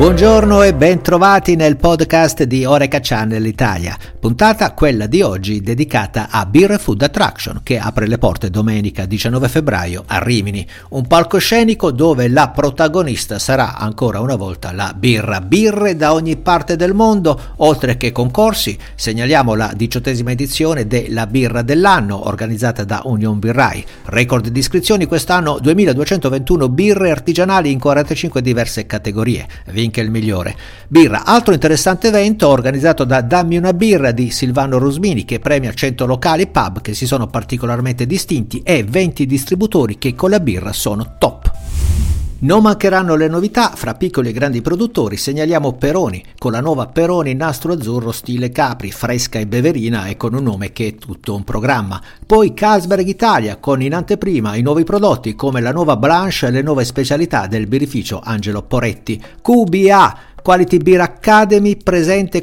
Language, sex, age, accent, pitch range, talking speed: Italian, male, 60-79, native, 115-170 Hz, 155 wpm